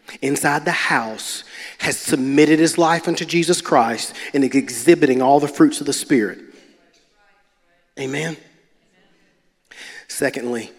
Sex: male